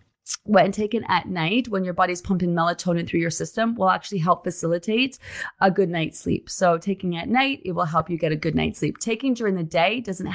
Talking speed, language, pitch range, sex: 220 wpm, English, 170-220 Hz, female